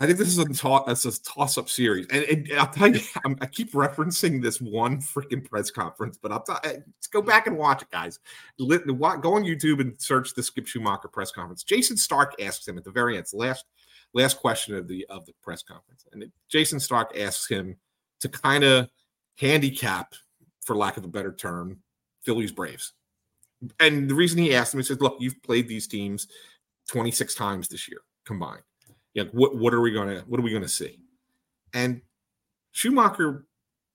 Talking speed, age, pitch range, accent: 200 wpm, 30-49, 115-150 Hz, American